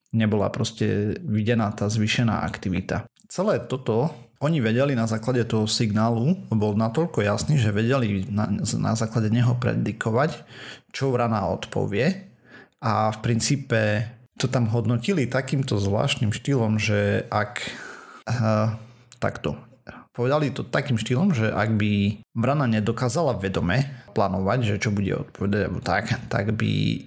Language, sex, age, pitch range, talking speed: Slovak, male, 30-49, 105-125 Hz, 125 wpm